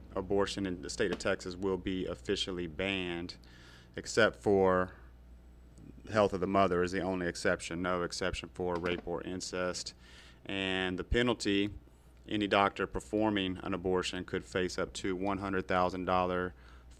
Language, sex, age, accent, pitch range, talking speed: English, male, 30-49, American, 85-105 Hz, 140 wpm